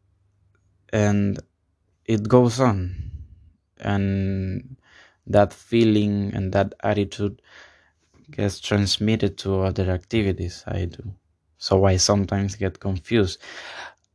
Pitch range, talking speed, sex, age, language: 90-105 Hz, 95 wpm, male, 20-39, Spanish